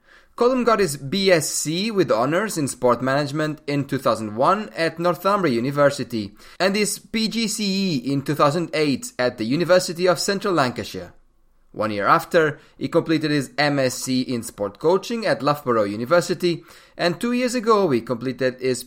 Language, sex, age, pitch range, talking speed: English, male, 30-49, 135-200 Hz, 145 wpm